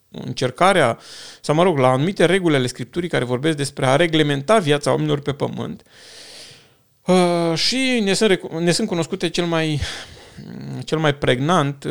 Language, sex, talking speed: Romanian, male, 140 wpm